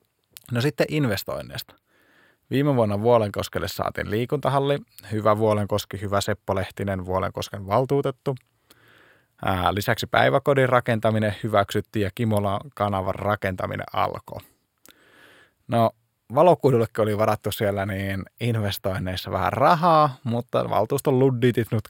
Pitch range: 100-130 Hz